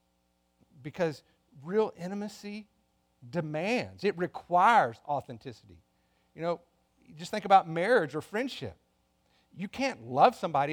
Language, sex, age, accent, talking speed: English, male, 50-69, American, 105 wpm